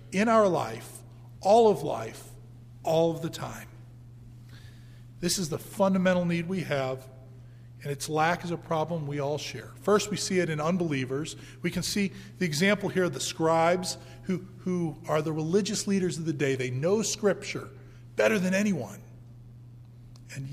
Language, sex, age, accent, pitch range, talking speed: English, male, 40-59, American, 125-185 Hz, 165 wpm